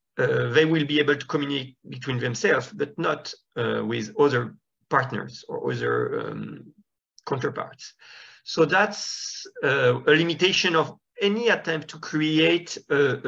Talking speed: 135 wpm